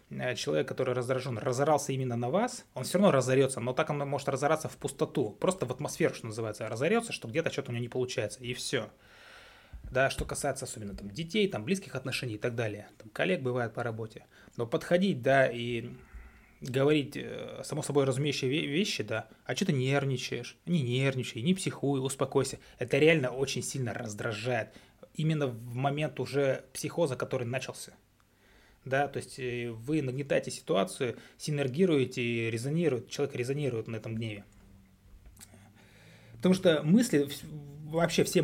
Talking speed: 155 wpm